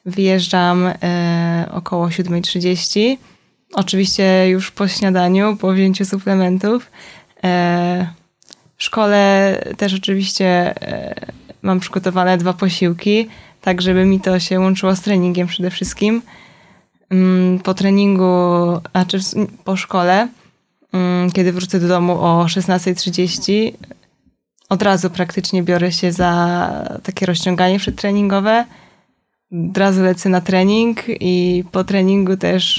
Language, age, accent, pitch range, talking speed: Polish, 20-39, native, 180-200 Hz, 105 wpm